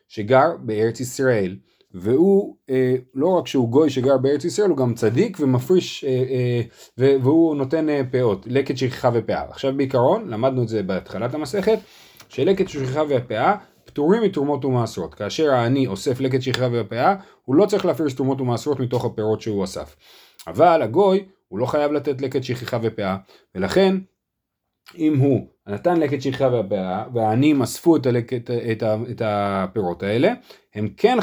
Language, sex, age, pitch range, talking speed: Hebrew, male, 30-49, 120-155 Hz, 155 wpm